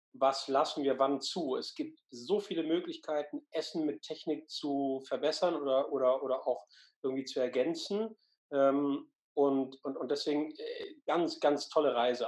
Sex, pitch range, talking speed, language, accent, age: male, 135-175 Hz, 140 wpm, German, German, 40-59